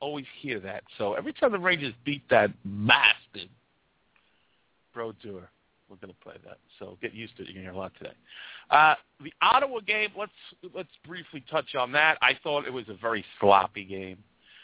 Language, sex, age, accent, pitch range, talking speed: English, male, 50-69, American, 95-130 Hz, 195 wpm